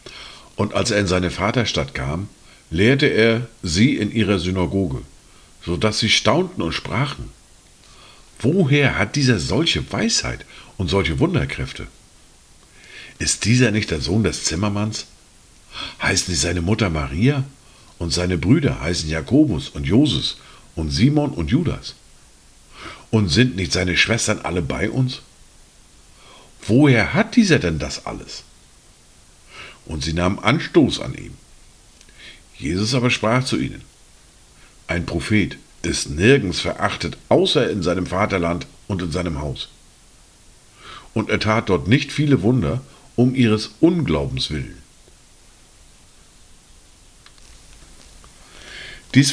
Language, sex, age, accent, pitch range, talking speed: German, male, 50-69, German, 85-120 Hz, 120 wpm